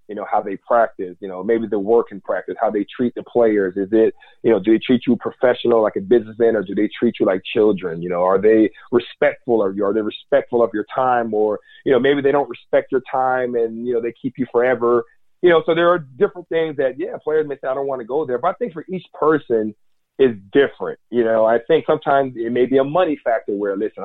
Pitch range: 115-150 Hz